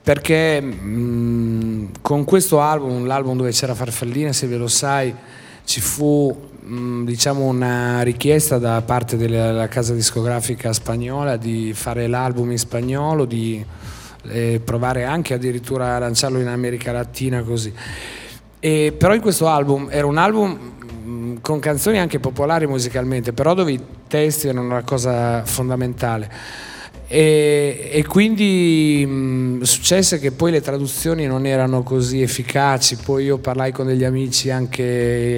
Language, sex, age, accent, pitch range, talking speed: Italian, male, 30-49, native, 120-145 Hz, 140 wpm